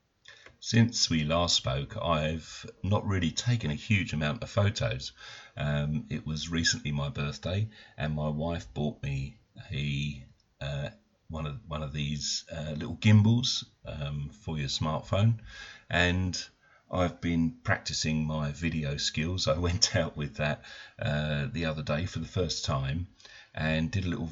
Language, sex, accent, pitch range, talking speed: English, male, British, 75-100 Hz, 160 wpm